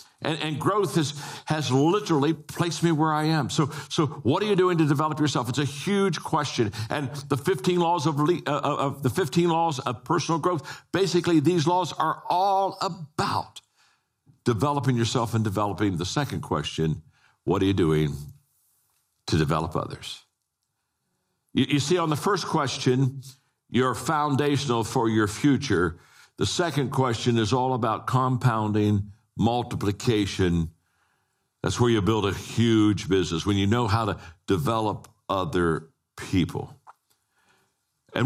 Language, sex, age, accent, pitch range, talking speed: English, male, 60-79, American, 120-160 Hz, 140 wpm